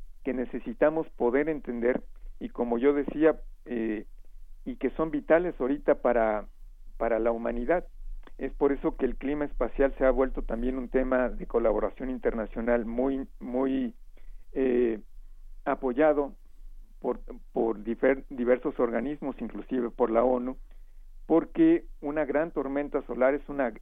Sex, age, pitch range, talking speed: male, 50-69, 110-140 Hz, 135 wpm